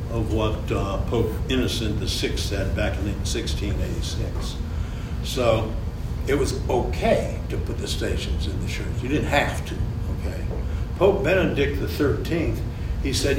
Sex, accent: male, American